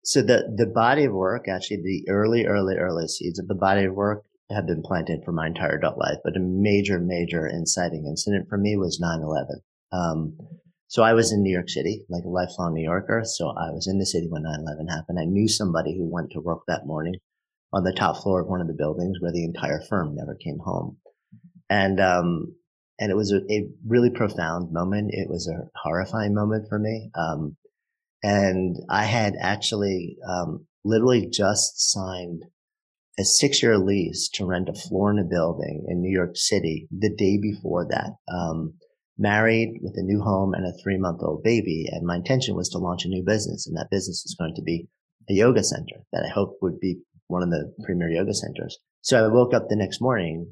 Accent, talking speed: American, 210 wpm